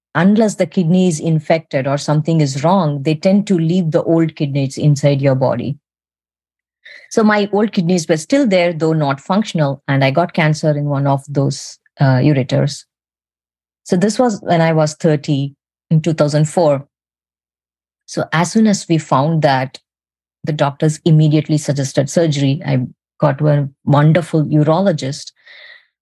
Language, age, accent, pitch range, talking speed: English, 20-39, Indian, 140-170 Hz, 150 wpm